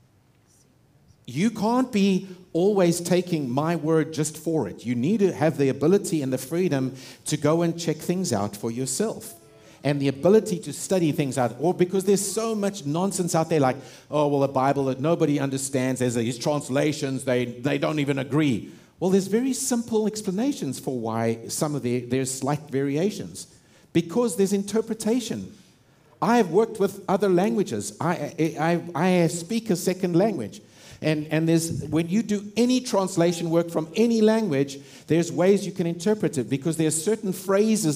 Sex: male